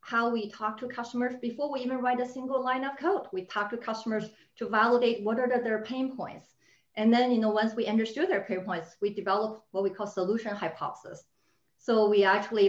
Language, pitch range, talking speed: English, 195-245 Hz, 220 wpm